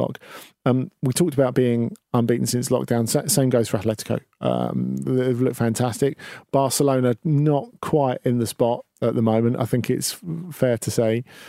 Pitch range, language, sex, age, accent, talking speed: 120-145 Hz, English, male, 40-59, British, 165 wpm